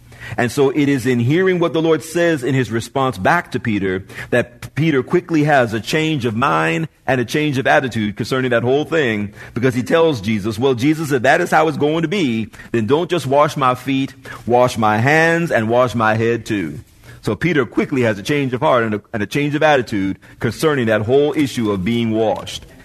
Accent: American